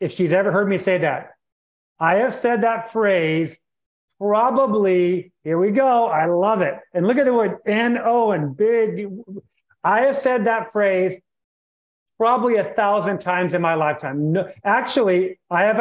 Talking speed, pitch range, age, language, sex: 160 wpm, 175-225 Hz, 40-59, English, male